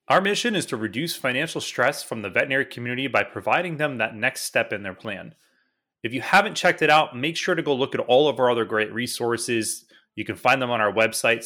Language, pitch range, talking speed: English, 110-140 Hz, 235 wpm